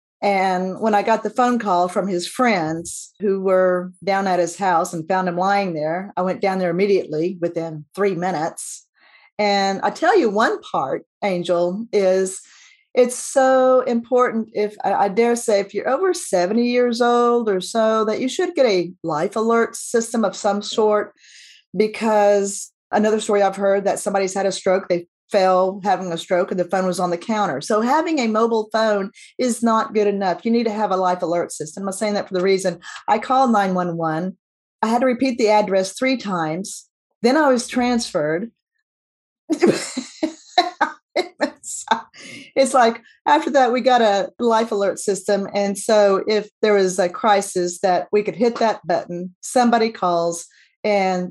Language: English